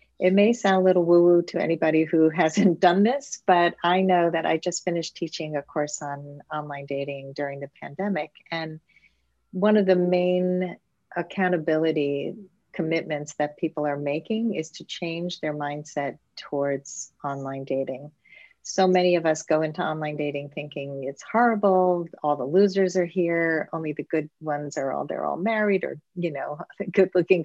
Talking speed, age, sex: 165 wpm, 40-59, female